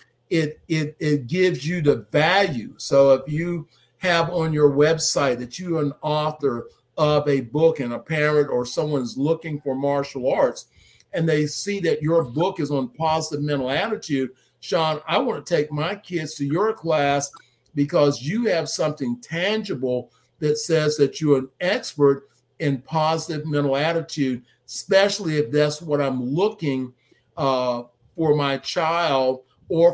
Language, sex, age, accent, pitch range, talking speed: English, male, 50-69, American, 135-160 Hz, 155 wpm